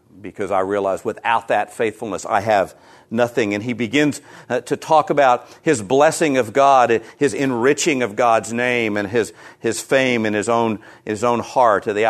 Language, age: English, 50-69